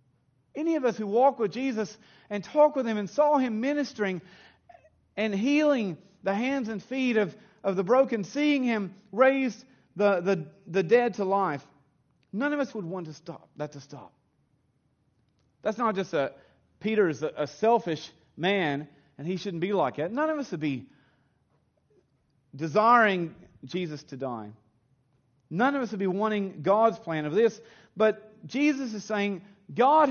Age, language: 40-59, English